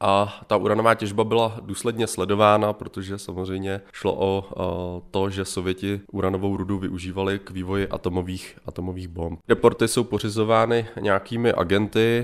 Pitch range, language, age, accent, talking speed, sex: 95-105 Hz, Czech, 20-39, native, 130 wpm, male